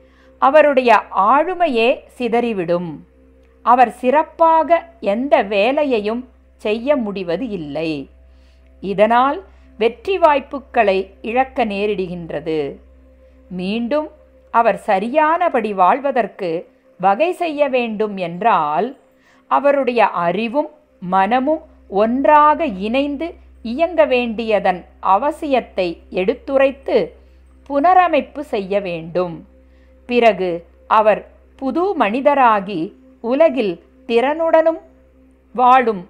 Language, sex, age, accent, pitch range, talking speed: Tamil, female, 50-69, native, 175-275 Hz, 70 wpm